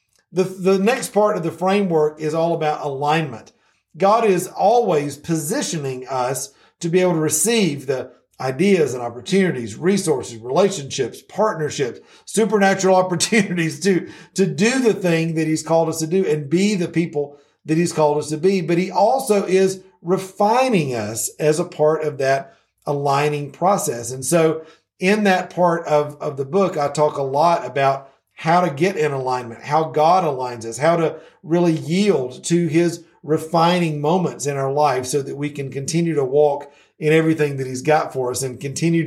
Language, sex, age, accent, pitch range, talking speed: English, male, 50-69, American, 140-180 Hz, 175 wpm